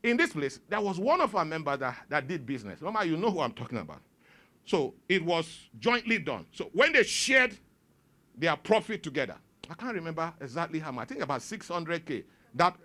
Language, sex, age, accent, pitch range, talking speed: English, male, 50-69, Nigerian, 120-190 Hz, 200 wpm